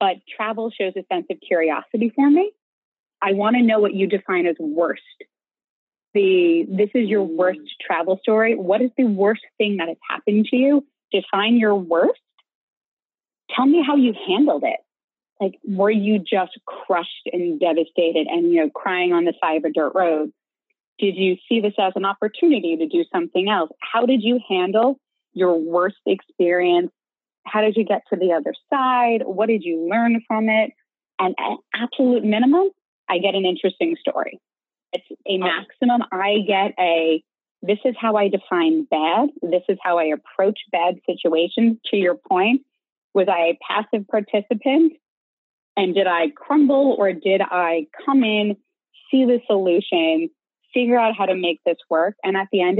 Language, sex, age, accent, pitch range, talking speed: English, female, 30-49, American, 185-260 Hz, 175 wpm